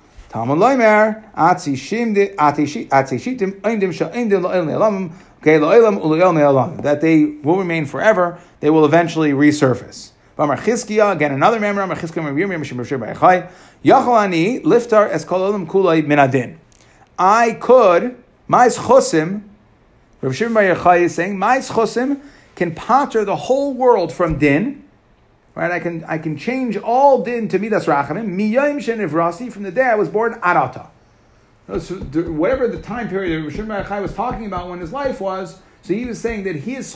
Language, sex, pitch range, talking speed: English, male, 150-215 Hz, 115 wpm